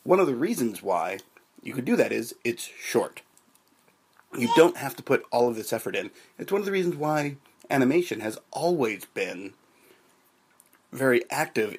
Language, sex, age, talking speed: English, male, 30-49, 175 wpm